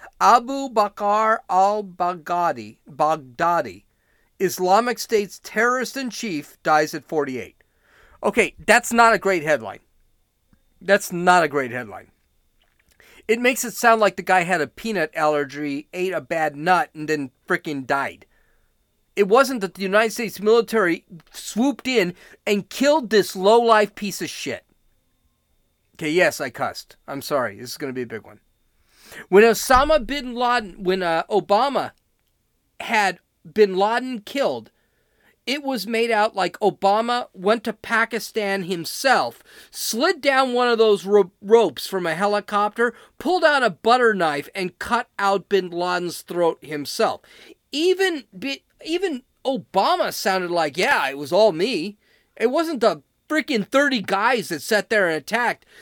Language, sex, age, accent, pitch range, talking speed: English, male, 40-59, American, 170-235 Hz, 140 wpm